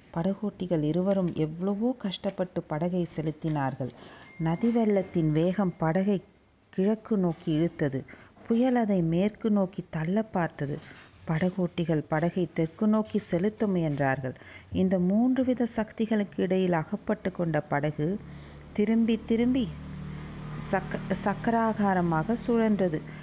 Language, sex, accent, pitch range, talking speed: Tamil, female, native, 165-215 Hz, 95 wpm